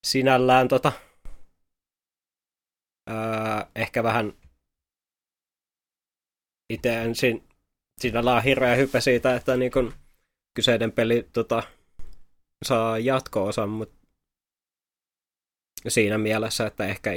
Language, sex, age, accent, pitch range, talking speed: Finnish, male, 20-39, native, 105-125 Hz, 80 wpm